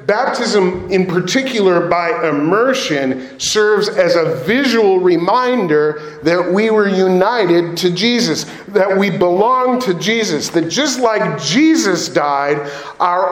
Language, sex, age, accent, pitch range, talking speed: English, male, 40-59, American, 170-225 Hz, 120 wpm